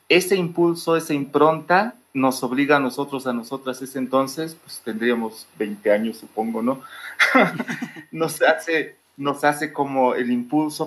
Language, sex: Chinese, male